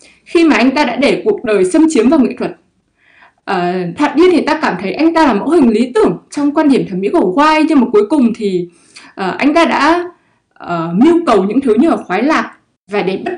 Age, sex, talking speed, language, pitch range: 20-39, female, 245 wpm, English, 200-280 Hz